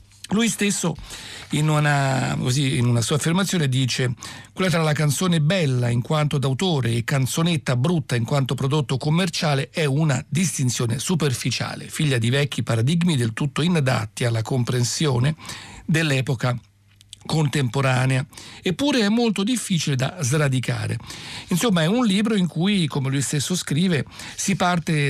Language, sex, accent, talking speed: Italian, male, native, 135 wpm